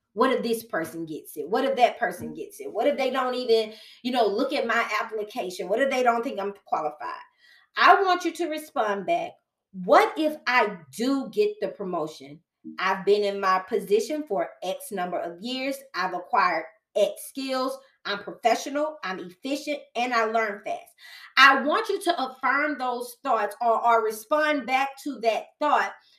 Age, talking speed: 20-39, 180 wpm